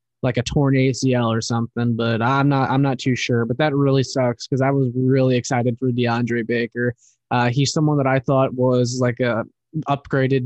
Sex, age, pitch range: male, 20-39, 120-150 Hz